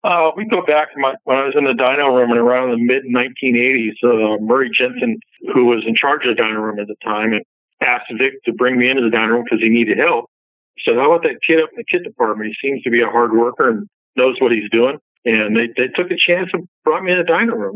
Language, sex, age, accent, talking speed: English, male, 50-69, American, 265 wpm